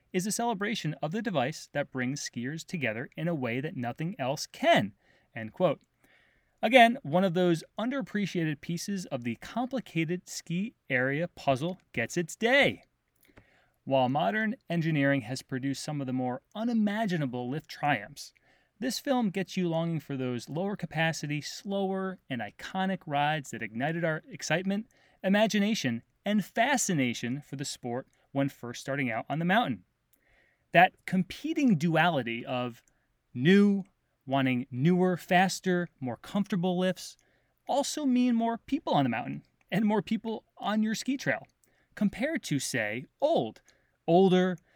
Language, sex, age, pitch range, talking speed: English, male, 30-49, 140-195 Hz, 140 wpm